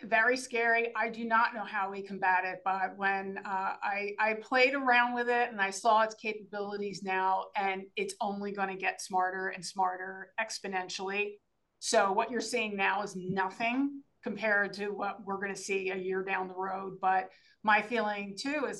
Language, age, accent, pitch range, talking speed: English, 30-49, American, 195-235 Hz, 190 wpm